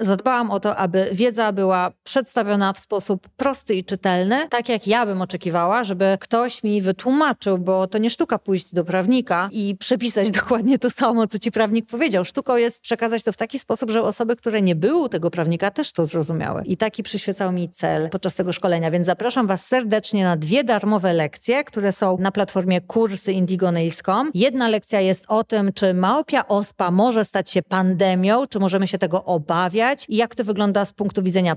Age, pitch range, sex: 40-59, 185-240 Hz, female